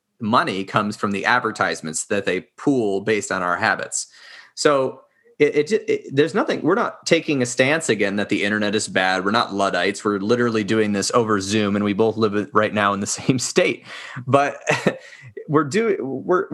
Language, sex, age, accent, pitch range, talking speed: English, male, 30-49, American, 105-140 Hz, 190 wpm